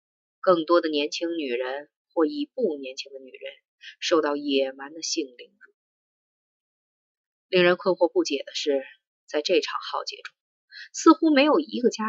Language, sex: Chinese, female